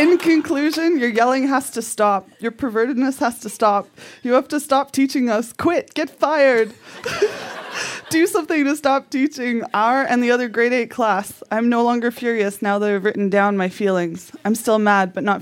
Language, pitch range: English, 210-280 Hz